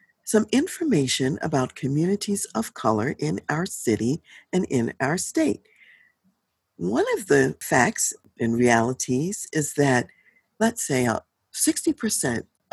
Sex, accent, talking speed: female, American, 115 wpm